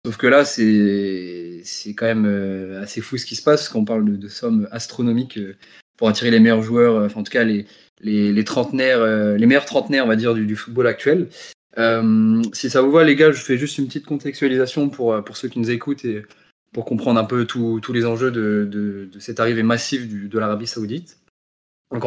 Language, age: French, 20-39